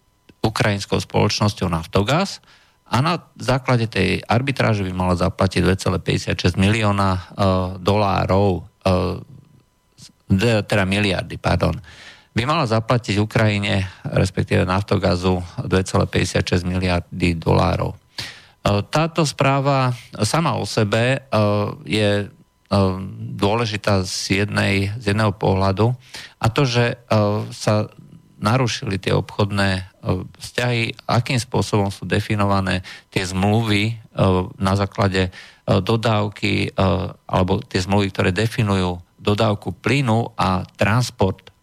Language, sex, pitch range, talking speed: Slovak, male, 95-115 Hz, 100 wpm